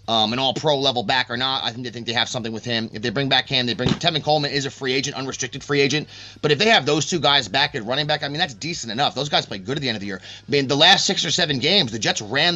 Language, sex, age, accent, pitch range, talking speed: English, male, 30-49, American, 115-155 Hz, 335 wpm